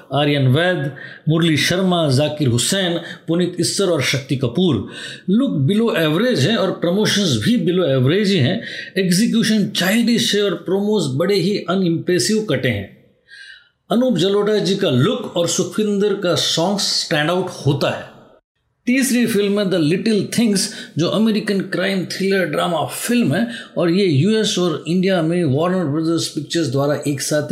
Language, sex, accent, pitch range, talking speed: Hindi, male, native, 155-200 Hz, 155 wpm